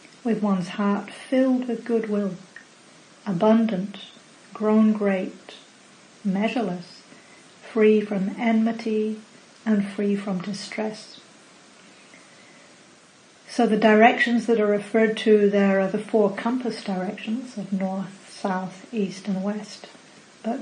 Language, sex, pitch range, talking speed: English, female, 200-225 Hz, 110 wpm